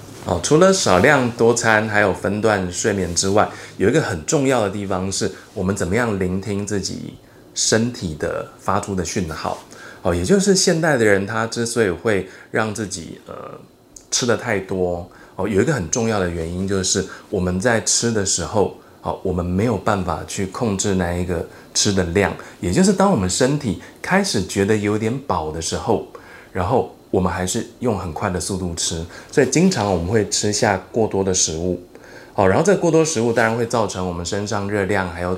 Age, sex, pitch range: 20-39, male, 90-115 Hz